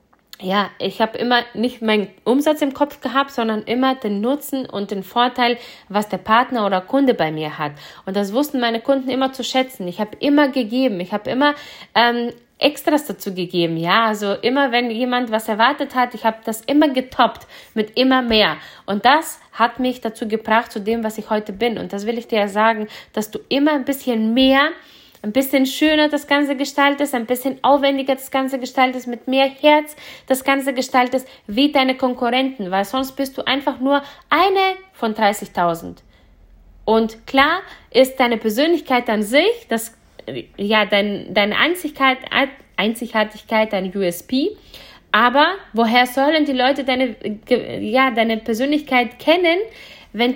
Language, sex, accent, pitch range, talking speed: German, female, German, 220-275 Hz, 165 wpm